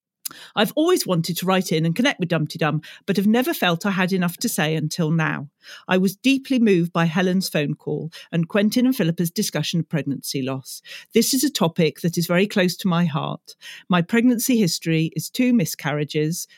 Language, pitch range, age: English, 160-200 Hz, 40-59